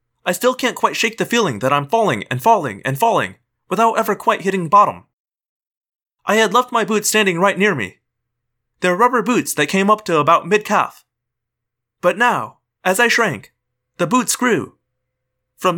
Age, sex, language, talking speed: 30-49, male, English, 175 wpm